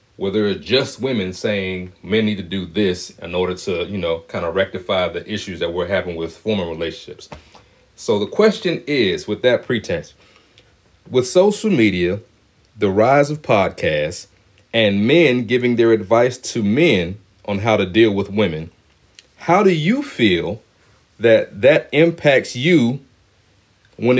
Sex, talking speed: male, 155 wpm